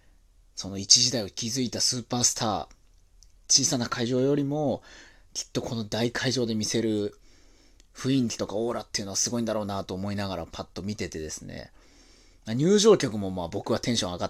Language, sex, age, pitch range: Japanese, male, 30-49, 90-125 Hz